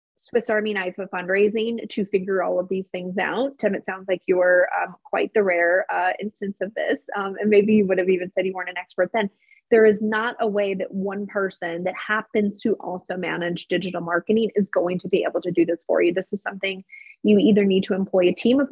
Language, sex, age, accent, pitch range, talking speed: English, female, 20-39, American, 180-220 Hz, 240 wpm